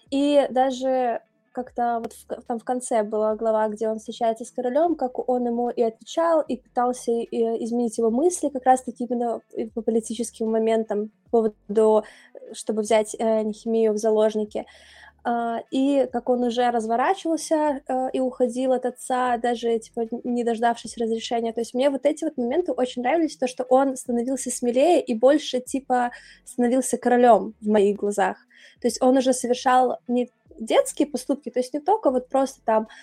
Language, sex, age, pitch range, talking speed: Russian, female, 20-39, 225-260 Hz, 165 wpm